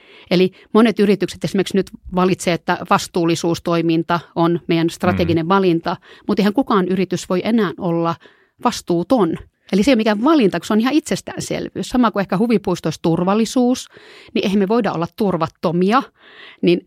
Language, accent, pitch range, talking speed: Finnish, native, 170-205 Hz, 150 wpm